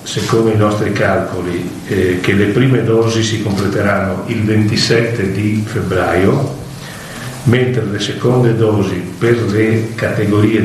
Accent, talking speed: native, 125 wpm